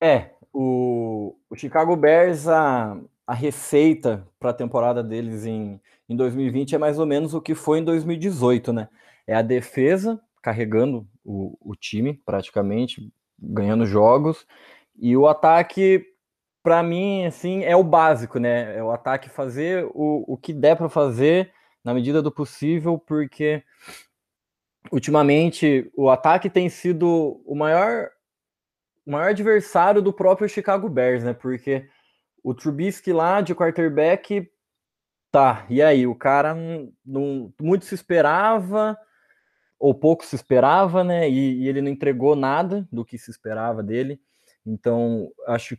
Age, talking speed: 20-39, 140 wpm